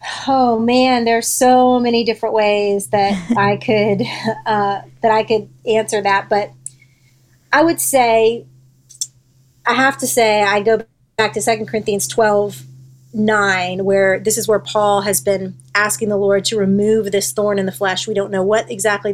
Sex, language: female, English